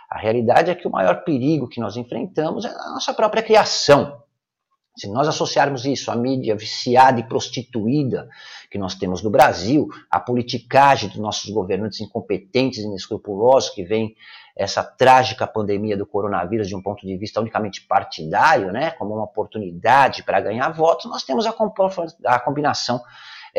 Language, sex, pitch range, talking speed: Portuguese, male, 110-150 Hz, 160 wpm